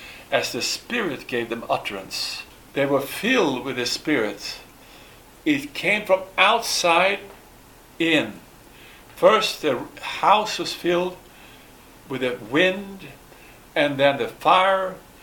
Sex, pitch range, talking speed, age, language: male, 140-175 Hz, 115 wpm, 60-79, English